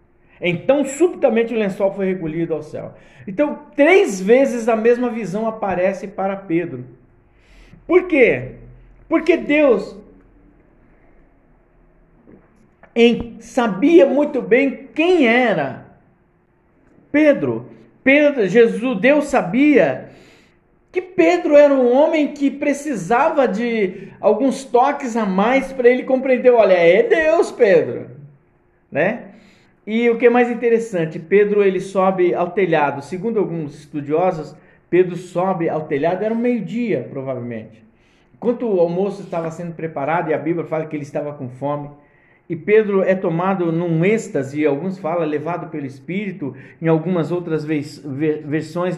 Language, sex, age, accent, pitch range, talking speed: Portuguese, male, 50-69, Brazilian, 160-255 Hz, 125 wpm